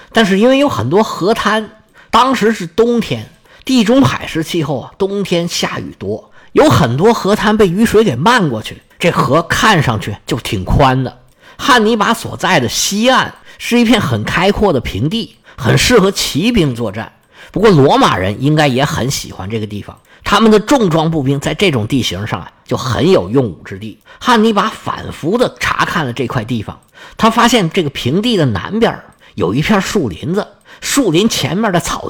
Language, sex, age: Chinese, male, 50-69